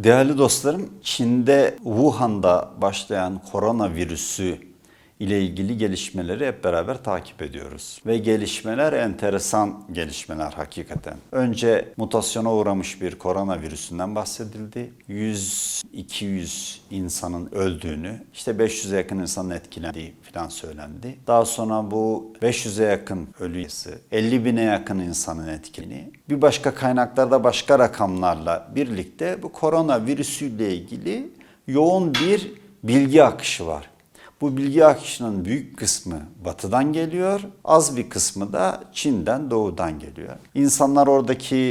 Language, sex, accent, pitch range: Turkish, male, native, 95-140 Hz